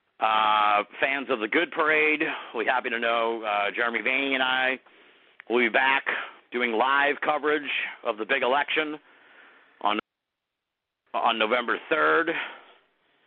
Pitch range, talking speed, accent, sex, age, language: 115-155 Hz, 130 wpm, American, male, 50-69, English